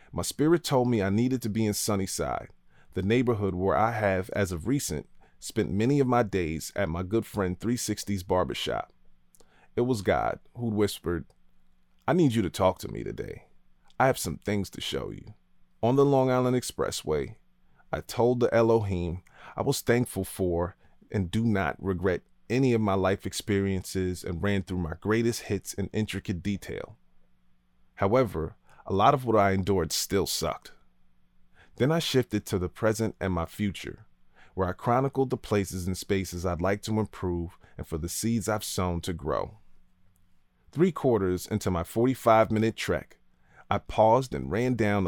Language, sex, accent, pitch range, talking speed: English, male, American, 85-110 Hz, 170 wpm